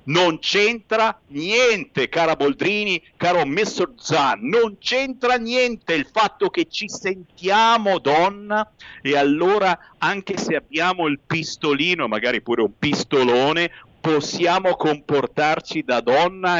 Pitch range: 145-210 Hz